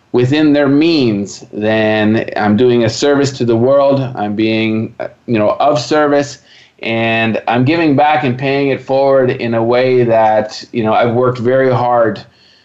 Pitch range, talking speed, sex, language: 115-135 Hz, 165 wpm, male, English